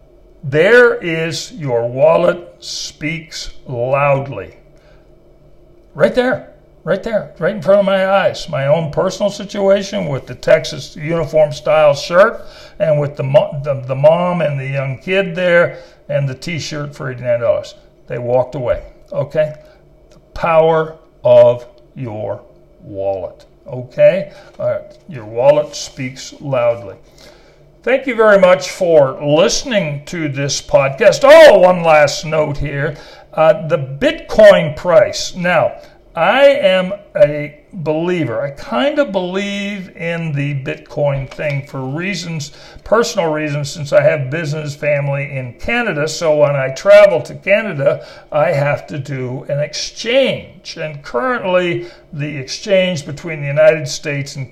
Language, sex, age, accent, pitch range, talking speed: English, male, 60-79, American, 140-195 Hz, 130 wpm